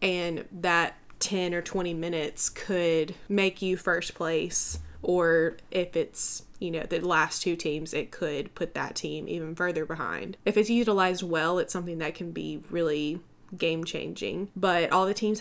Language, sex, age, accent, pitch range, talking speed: English, female, 20-39, American, 165-190 Hz, 170 wpm